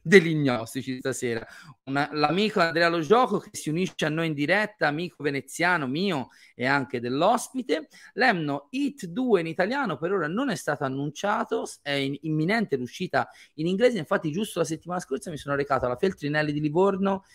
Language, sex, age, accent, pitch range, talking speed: Italian, male, 30-49, native, 130-175 Hz, 175 wpm